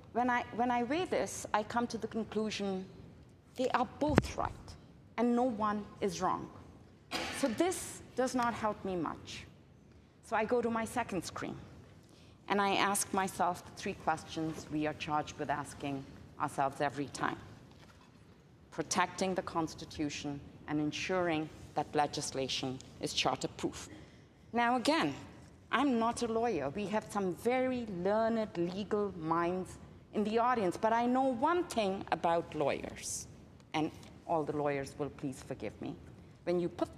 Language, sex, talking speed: English, female, 150 wpm